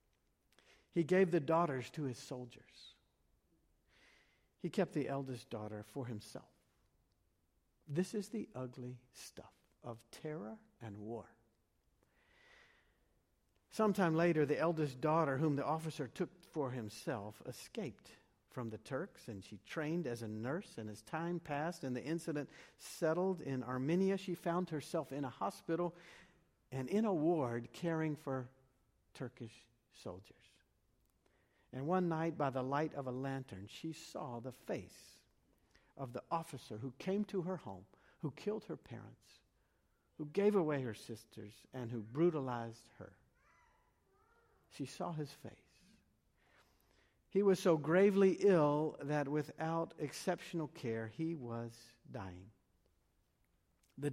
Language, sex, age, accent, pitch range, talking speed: English, male, 50-69, American, 115-165 Hz, 130 wpm